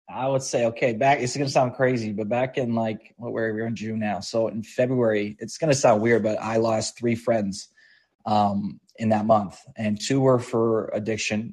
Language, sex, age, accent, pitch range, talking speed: English, male, 20-39, American, 105-125 Hz, 230 wpm